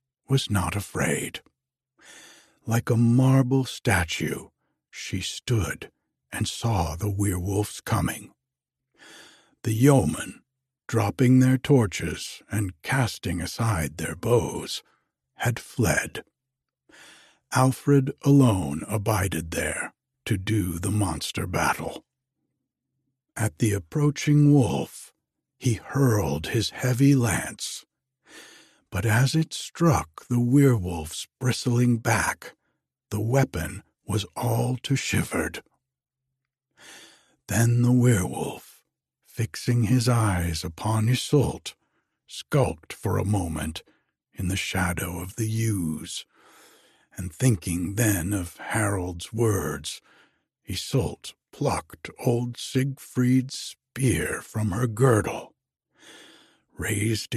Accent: American